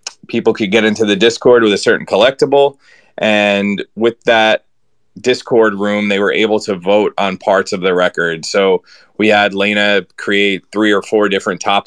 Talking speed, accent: 175 wpm, American